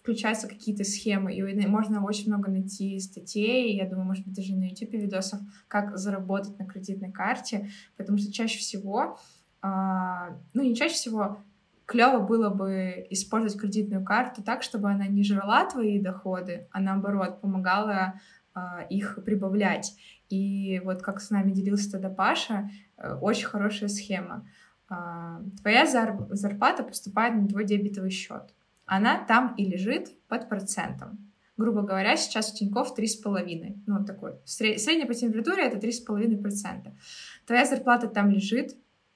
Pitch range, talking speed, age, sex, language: 195-220 Hz, 140 wpm, 20-39, female, Russian